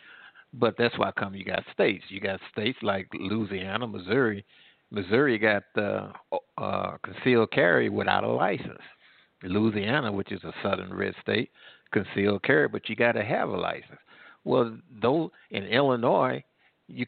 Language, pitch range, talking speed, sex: English, 105-140 Hz, 150 wpm, male